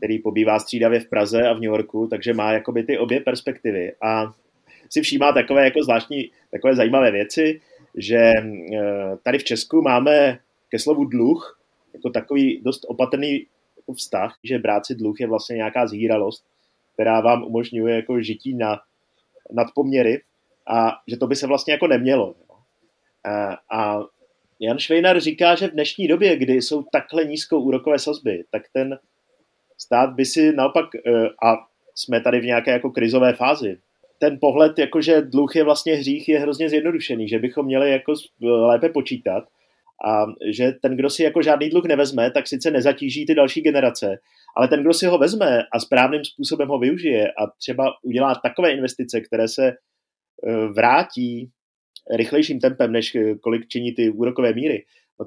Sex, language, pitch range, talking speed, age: male, Czech, 115-150 Hz, 160 wpm, 30-49